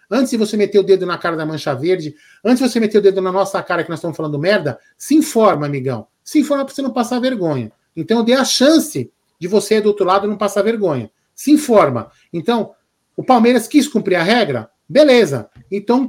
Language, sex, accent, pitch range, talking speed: Portuguese, male, Brazilian, 185-260 Hz, 215 wpm